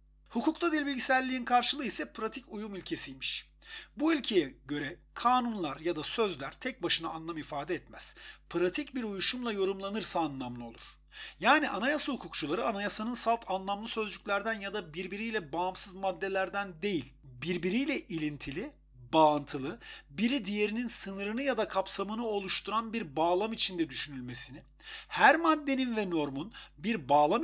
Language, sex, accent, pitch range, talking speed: Turkish, male, native, 170-240 Hz, 125 wpm